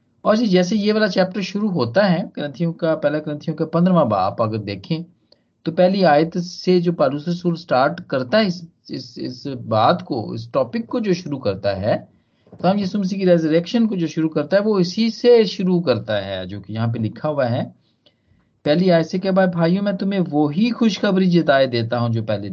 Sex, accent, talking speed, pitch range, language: male, native, 155 wpm, 115-175 Hz, Hindi